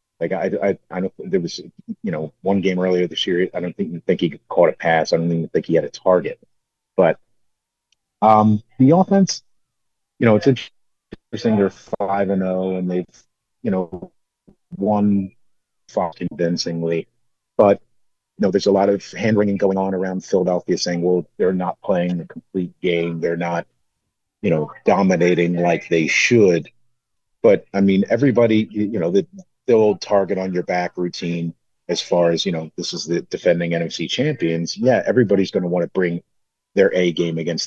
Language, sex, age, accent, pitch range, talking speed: English, male, 40-59, American, 85-105 Hz, 180 wpm